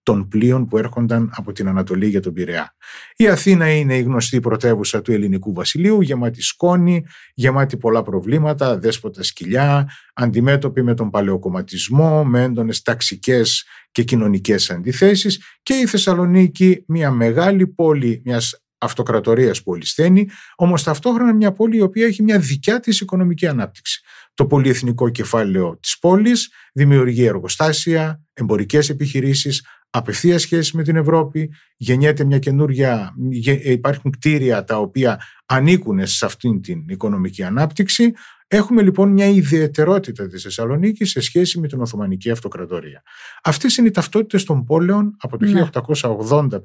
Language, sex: Greek, male